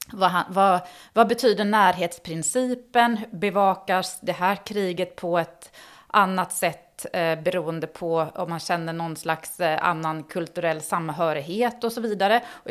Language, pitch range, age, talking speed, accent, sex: Swedish, 160-210 Hz, 30-49, 125 wpm, native, female